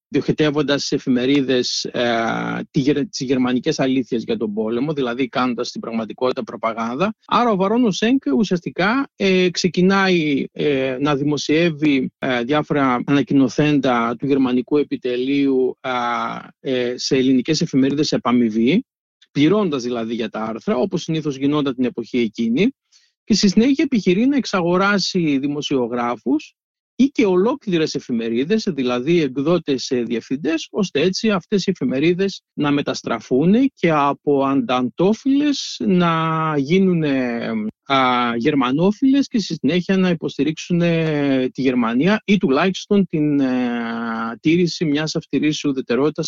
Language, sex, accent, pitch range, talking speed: Greek, male, native, 130-185 Hz, 115 wpm